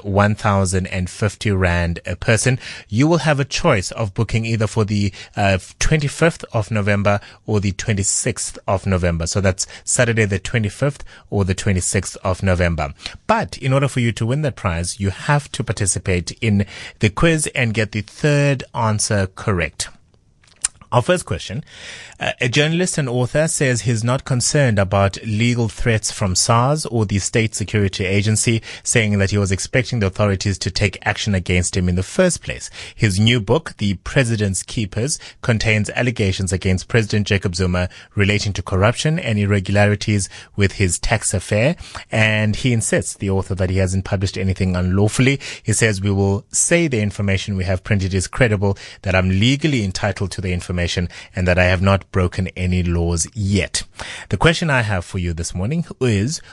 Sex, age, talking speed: male, 30-49, 175 wpm